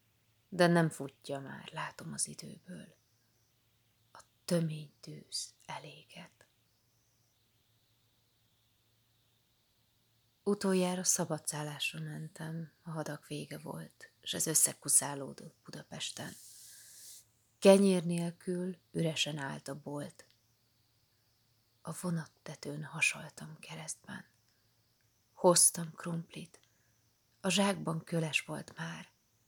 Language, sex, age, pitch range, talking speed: Hungarian, female, 30-49, 115-165 Hz, 80 wpm